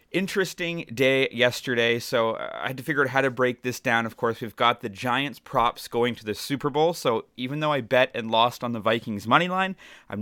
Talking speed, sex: 230 wpm, male